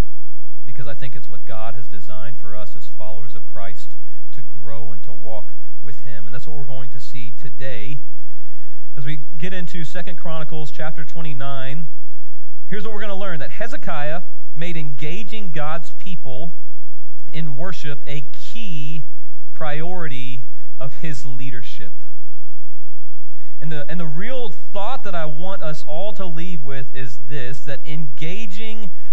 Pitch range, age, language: 125-160 Hz, 40-59, English